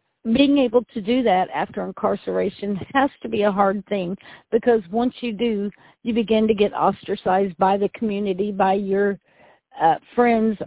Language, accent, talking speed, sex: English, American, 165 wpm, female